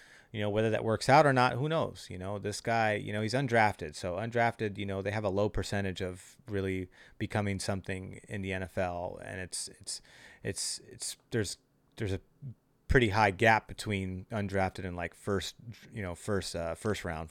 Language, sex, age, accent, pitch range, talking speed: English, male, 30-49, American, 95-115 Hz, 195 wpm